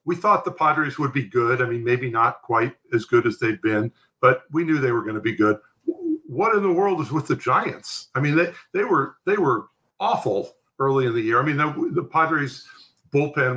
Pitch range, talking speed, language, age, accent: 110-155 Hz, 230 wpm, English, 50-69, American